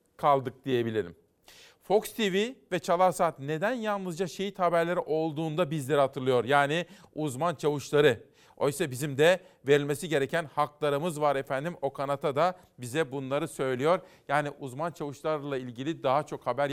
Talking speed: 135 wpm